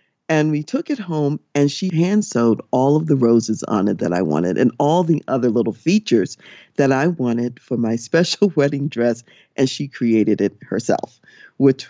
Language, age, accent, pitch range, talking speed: English, 50-69, American, 115-165 Hz, 190 wpm